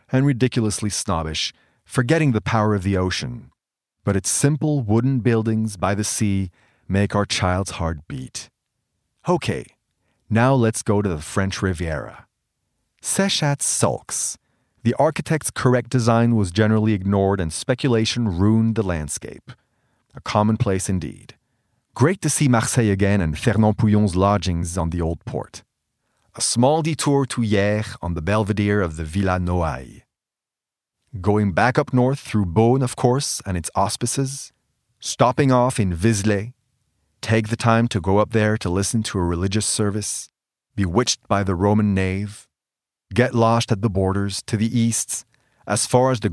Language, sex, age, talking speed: French, male, 40-59, 150 wpm